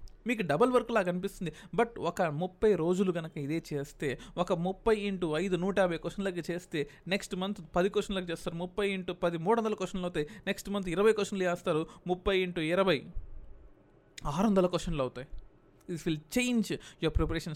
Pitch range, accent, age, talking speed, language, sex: 160-205 Hz, native, 20-39, 165 wpm, Telugu, male